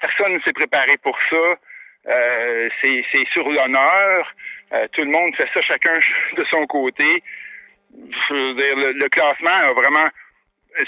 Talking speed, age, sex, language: 160 wpm, 60-79, male, French